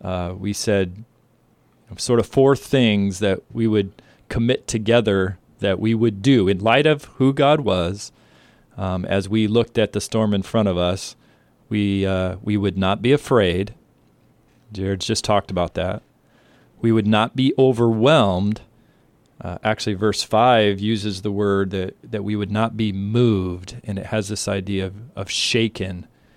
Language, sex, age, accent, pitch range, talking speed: English, male, 40-59, American, 95-115 Hz, 170 wpm